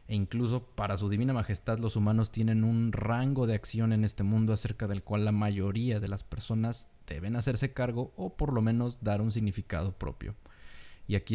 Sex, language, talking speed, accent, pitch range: male, Spanish, 195 wpm, Mexican, 100-120 Hz